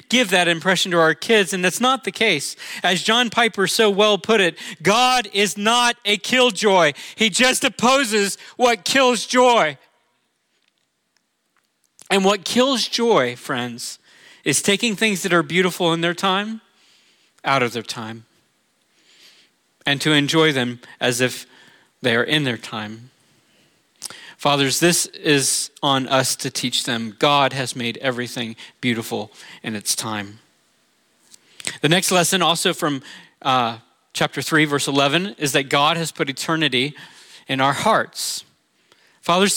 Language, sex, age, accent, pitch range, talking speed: English, male, 40-59, American, 145-220 Hz, 145 wpm